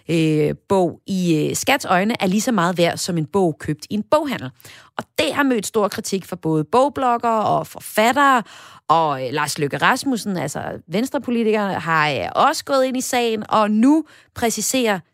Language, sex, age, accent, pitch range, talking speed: Danish, female, 30-49, native, 165-235 Hz, 165 wpm